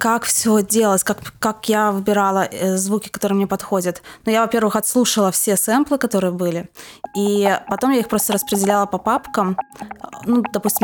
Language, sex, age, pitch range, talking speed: Russian, female, 20-39, 185-220 Hz, 160 wpm